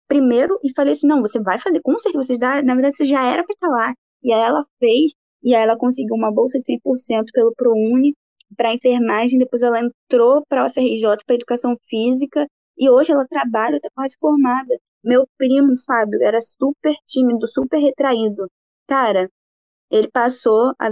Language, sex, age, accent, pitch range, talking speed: Portuguese, female, 10-29, Brazilian, 230-275 Hz, 175 wpm